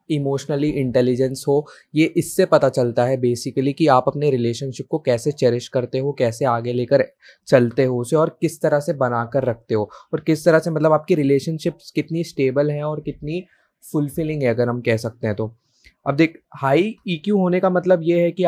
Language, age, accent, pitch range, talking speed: Hindi, 20-39, native, 135-160 Hz, 200 wpm